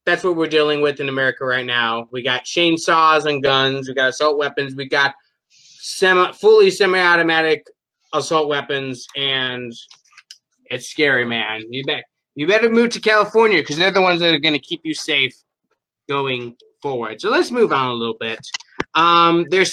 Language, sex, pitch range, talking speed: English, male, 140-210 Hz, 175 wpm